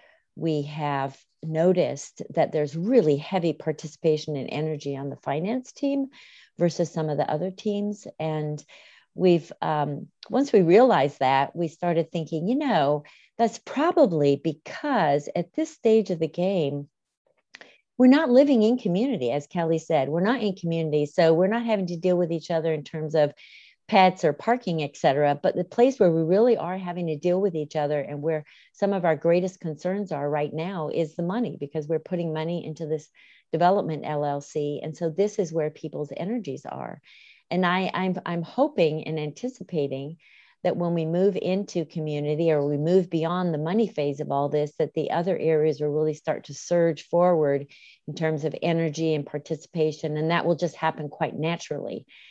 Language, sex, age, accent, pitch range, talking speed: English, female, 50-69, American, 150-185 Hz, 180 wpm